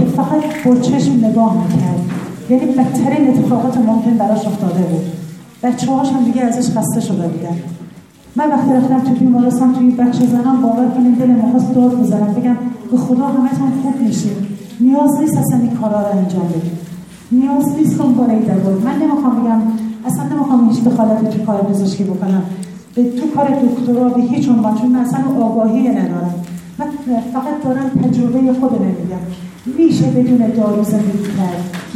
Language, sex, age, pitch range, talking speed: Persian, female, 40-59, 205-260 Hz, 150 wpm